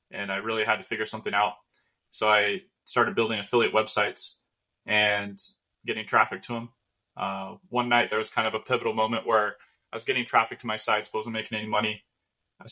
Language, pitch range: English, 105-120 Hz